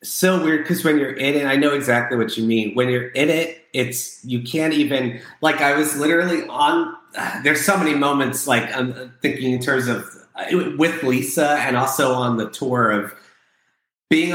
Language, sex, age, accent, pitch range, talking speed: English, male, 30-49, American, 120-155 Hz, 200 wpm